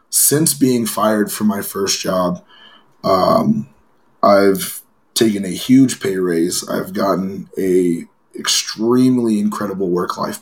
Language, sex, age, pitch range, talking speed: English, male, 20-39, 105-125 Hz, 115 wpm